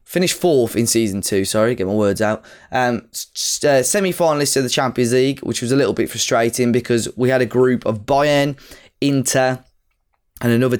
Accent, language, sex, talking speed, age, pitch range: British, English, male, 185 wpm, 10-29, 110-130 Hz